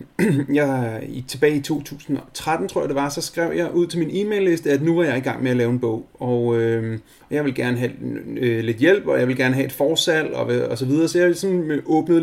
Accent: native